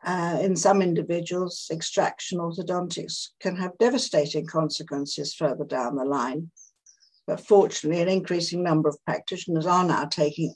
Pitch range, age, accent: 160-195 Hz, 60-79, British